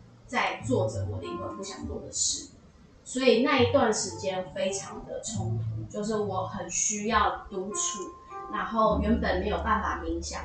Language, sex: Chinese, female